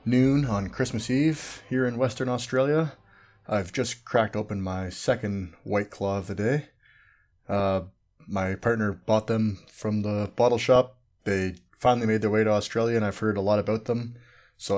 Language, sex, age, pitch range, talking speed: English, male, 20-39, 100-115 Hz, 175 wpm